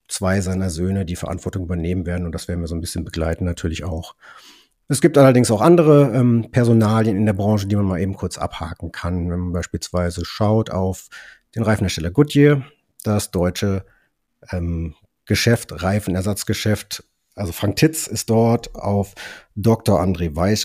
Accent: German